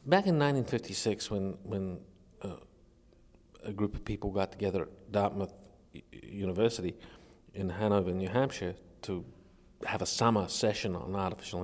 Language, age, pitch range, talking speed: English, 50-69, 100-130 Hz, 140 wpm